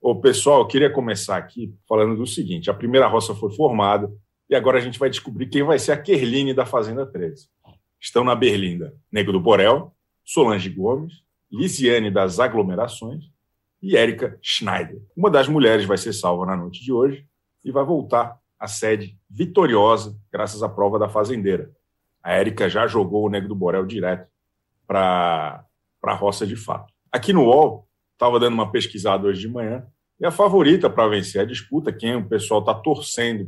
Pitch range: 100-130 Hz